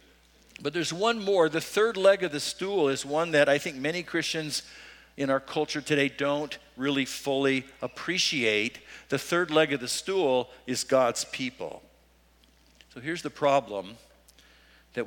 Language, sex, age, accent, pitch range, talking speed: English, male, 50-69, American, 130-185 Hz, 155 wpm